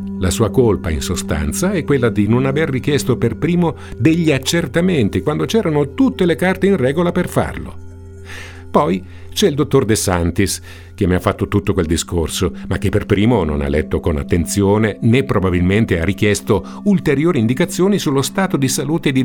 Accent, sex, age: native, male, 50-69